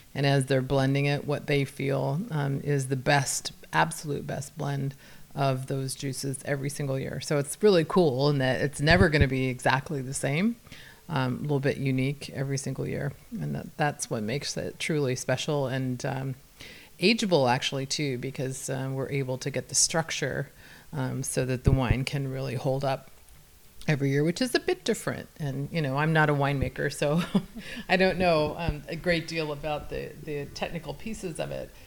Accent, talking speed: American, 190 wpm